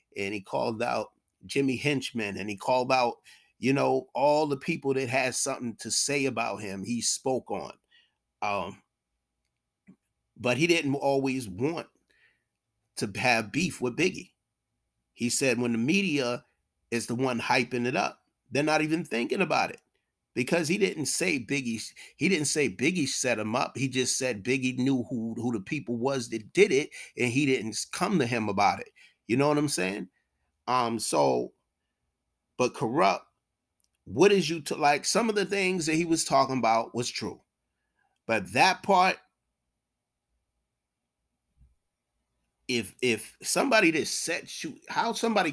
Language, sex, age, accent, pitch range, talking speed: English, male, 30-49, American, 100-140 Hz, 160 wpm